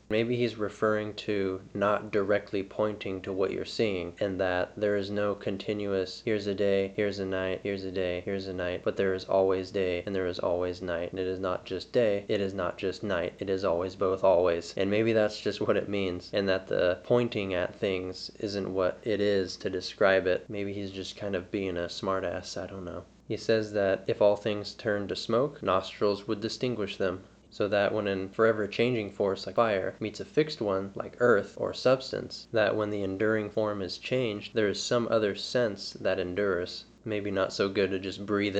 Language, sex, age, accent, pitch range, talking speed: English, male, 20-39, American, 95-105 Hz, 215 wpm